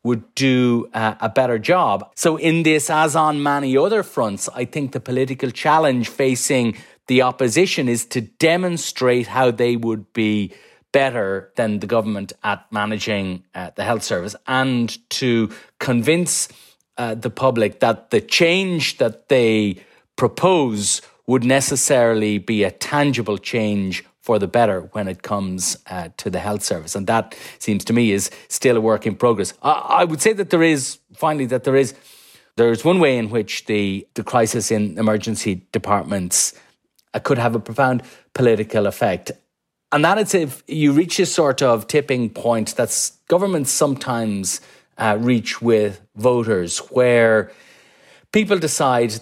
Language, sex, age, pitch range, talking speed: English, male, 30-49, 110-135 Hz, 160 wpm